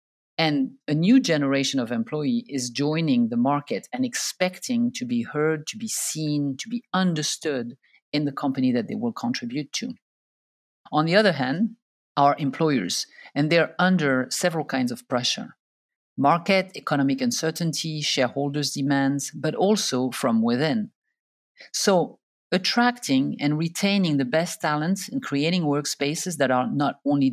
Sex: male